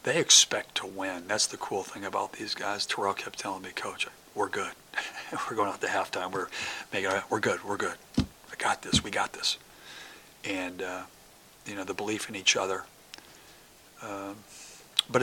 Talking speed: 190 wpm